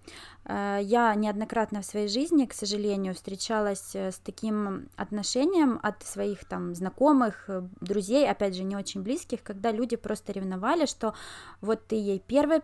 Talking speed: 140 wpm